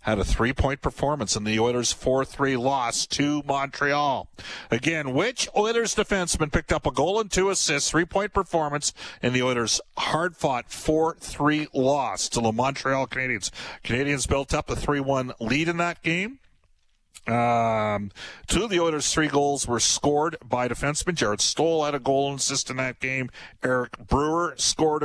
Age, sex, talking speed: 50-69, male, 160 wpm